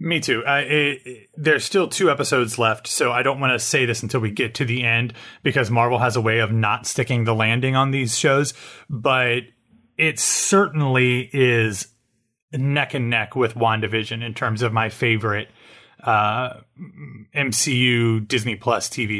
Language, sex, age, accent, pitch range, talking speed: English, male, 30-49, American, 115-130 Hz, 165 wpm